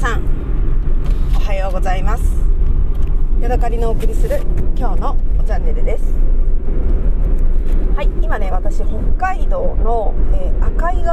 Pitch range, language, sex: 65-80 Hz, Japanese, female